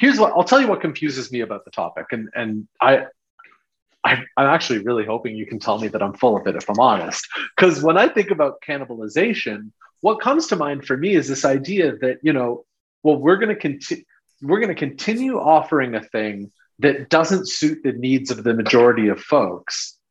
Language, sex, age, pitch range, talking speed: English, male, 30-49, 115-155 Hz, 210 wpm